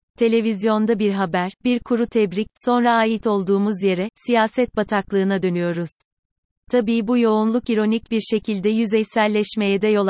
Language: Turkish